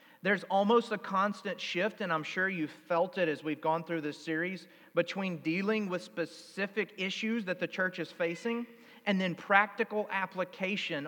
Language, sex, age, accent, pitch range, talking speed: English, male, 40-59, American, 180-225 Hz, 170 wpm